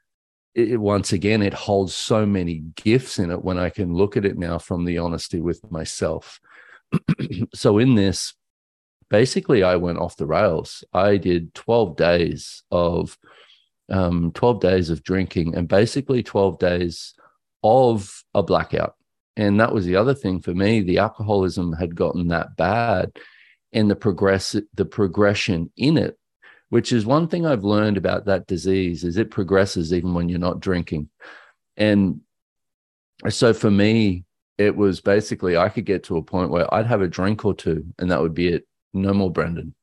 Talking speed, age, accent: 170 wpm, 40-59, Australian